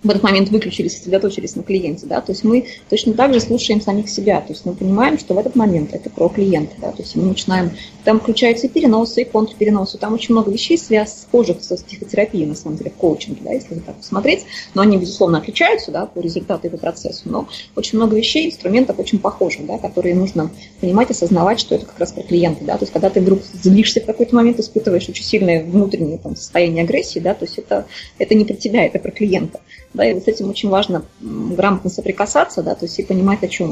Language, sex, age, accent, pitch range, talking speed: Russian, female, 20-39, native, 180-225 Hz, 230 wpm